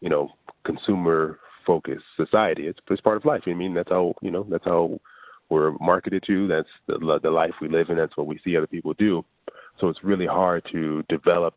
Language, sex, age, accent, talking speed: English, male, 30-49, American, 215 wpm